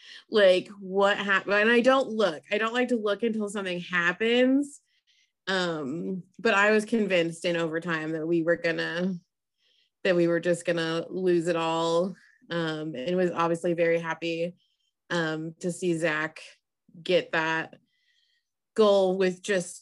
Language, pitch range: English, 170-215 Hz